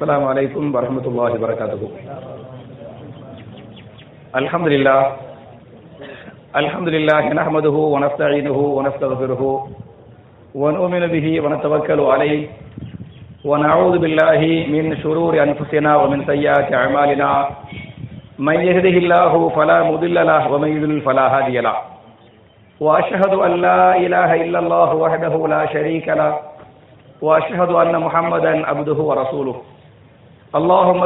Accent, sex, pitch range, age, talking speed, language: Indian, male, 135-170 Hz, 50-69, 100 wpm, English